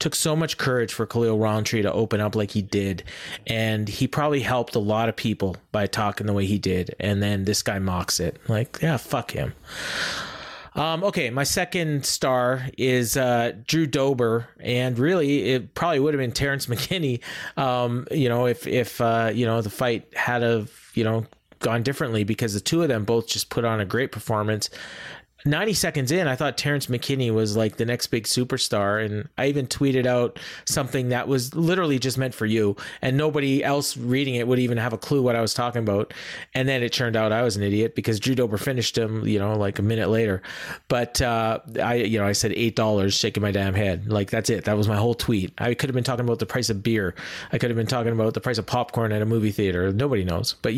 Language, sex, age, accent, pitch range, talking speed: English, male, 30-49, American, 110-130 Hz, 225 wpm